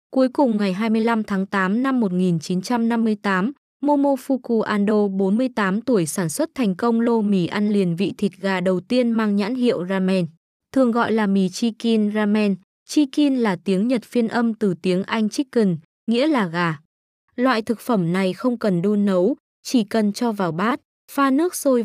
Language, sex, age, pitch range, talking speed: Vietnamese, female, 20-39, 190-240 Hz, 175 wpm